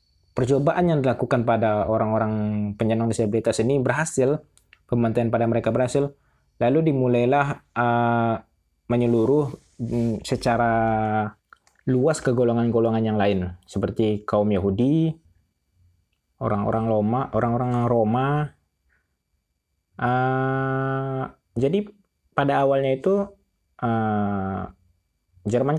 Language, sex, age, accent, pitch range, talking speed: Indonesian, male, 20-39, native, 105-135 Hz, 90 wpm